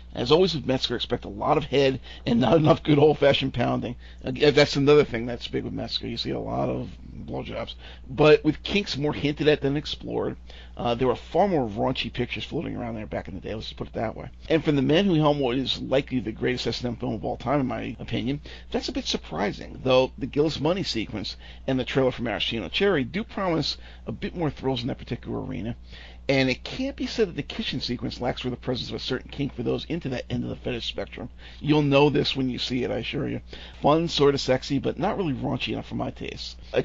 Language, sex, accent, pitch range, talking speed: English, male, American, 120-150 Hz, 245 wpm